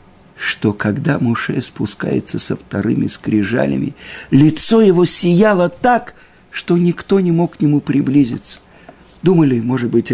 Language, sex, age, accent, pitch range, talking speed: Russian, male, 50-69, native, 110-170 Hz, 125 wpm